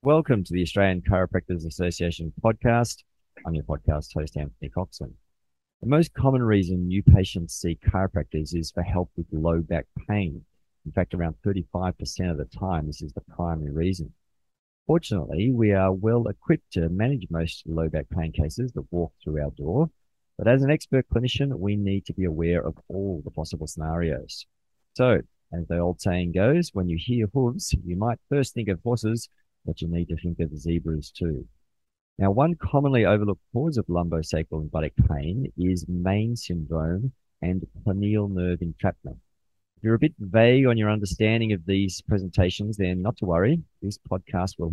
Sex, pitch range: male, 85-105 Hz